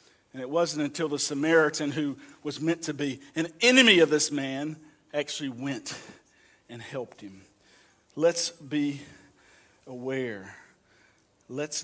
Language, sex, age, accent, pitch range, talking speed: English, male, 50-69, American, 150-210 Hz, 125 wpm